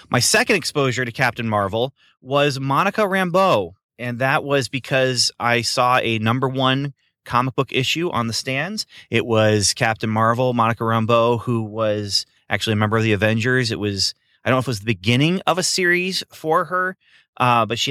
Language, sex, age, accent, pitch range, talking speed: English, male, 30-49, American, 105-130 Hz, 190 wpm